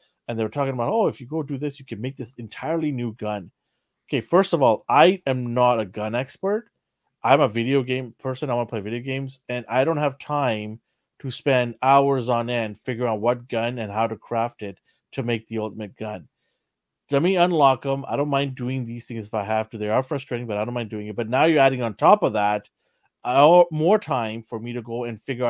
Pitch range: 115-135 Hz